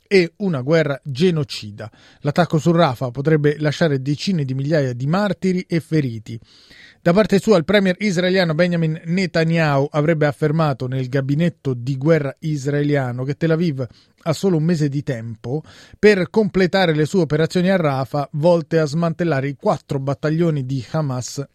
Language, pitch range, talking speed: Italian, 140-170 Hz, 155 wpm